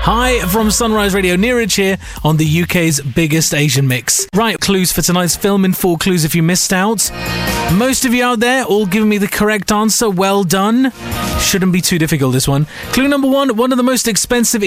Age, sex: 30-49, male